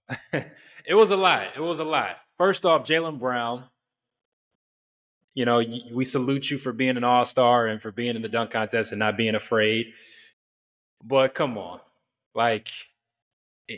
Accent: American